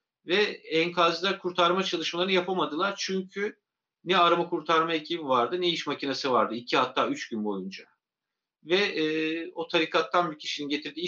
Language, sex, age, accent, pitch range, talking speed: Turkish, male, 50-69, native, 130-180 Hz, 145 wpm